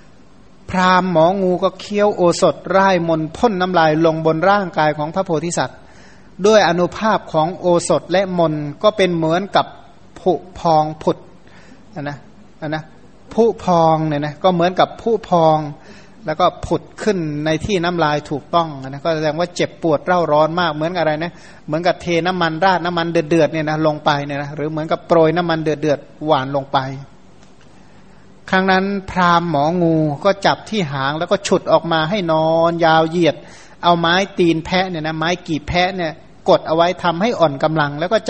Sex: male